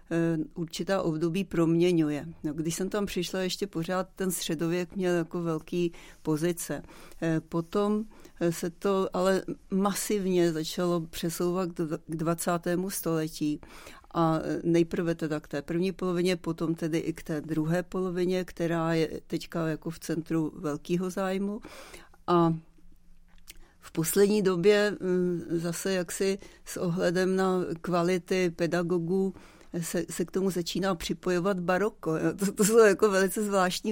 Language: Czech